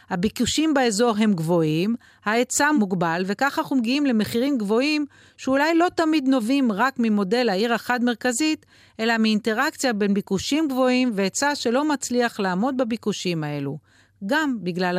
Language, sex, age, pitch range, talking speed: Hebrew, female, 40-59, 190-255 Hz, 130 wpm